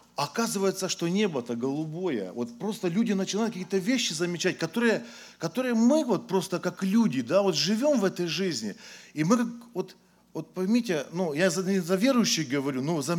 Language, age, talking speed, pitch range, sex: English, 40-59, 175 wpm, 135-200 Hz, male